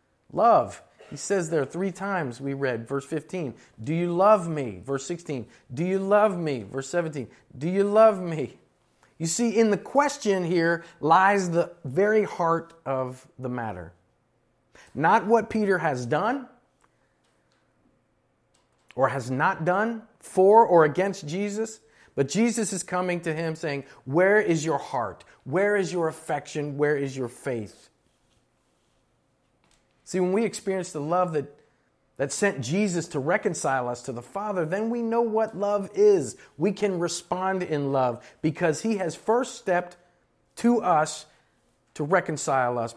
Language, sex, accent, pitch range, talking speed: English, male, American, 135-195 Hz, 150 wpm